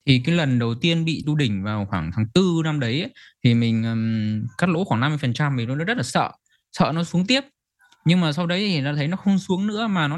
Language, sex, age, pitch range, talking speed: Vietnamese, male, 20-39, 120-165 Hz, 260 wpm